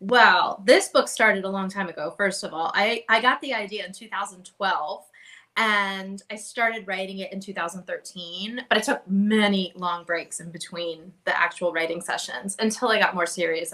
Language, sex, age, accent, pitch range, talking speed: English, female, 20-39, American, 200-265 Hz, 185 wpm